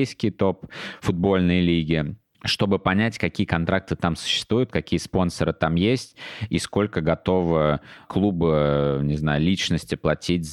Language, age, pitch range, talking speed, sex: Russian, 20-39, 80-95 Hz, 120 wpm, male